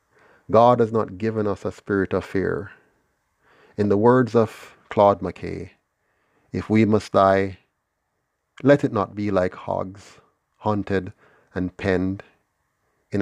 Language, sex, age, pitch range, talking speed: English, male, 30-49, 95-110 Hz, 130 wpm